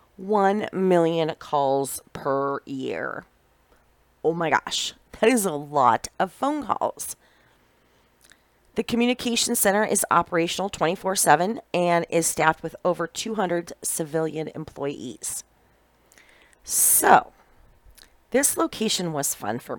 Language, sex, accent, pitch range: English, female, American, 155-220 Hz